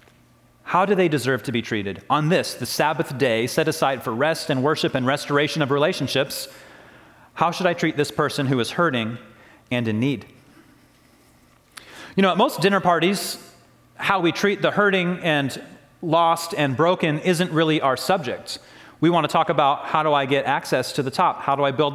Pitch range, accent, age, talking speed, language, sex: 140-185 Hz, American, 30-49, 190 wpm, English, male